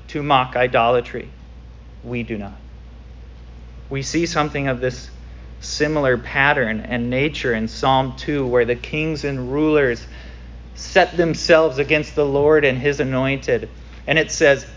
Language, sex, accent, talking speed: English, male, American, 140 wpm